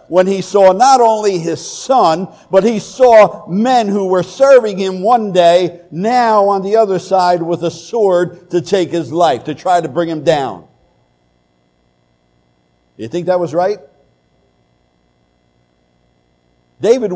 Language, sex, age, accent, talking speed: English, male, 60-79, American, 145 wpm